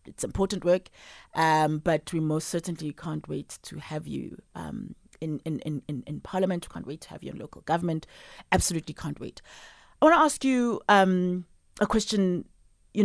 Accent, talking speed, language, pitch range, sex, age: South African, 185 wpm, English, 150-190 Hz, female, 30-49